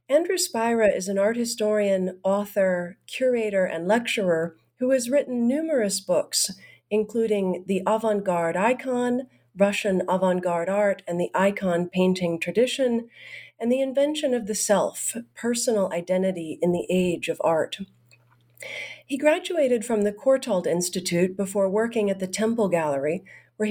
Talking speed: 135 wpm